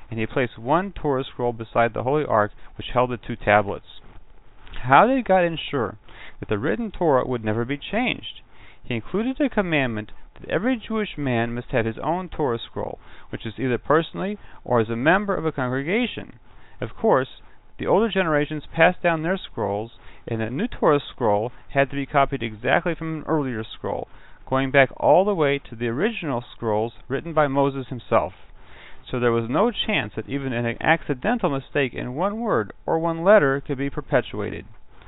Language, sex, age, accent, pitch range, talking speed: English, male, 40-59, American, 120-170 Hz, 185 wpm